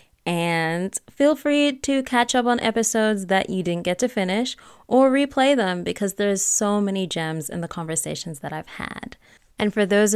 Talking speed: 185 wpm